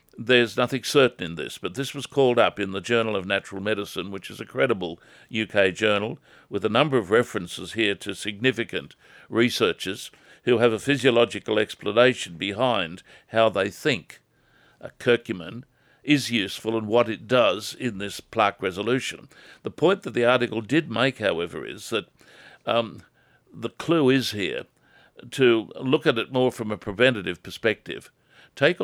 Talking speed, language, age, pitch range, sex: 160 wpm, English, 60-79, 105-125 Hz, male